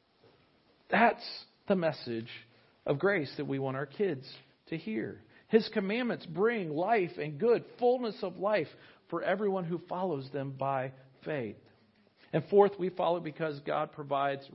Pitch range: 150-200 Hz